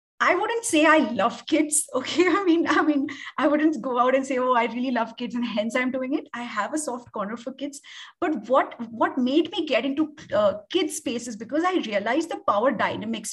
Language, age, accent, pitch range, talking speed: English, 30-49, Indian, 235-315 Hz, 225 wpm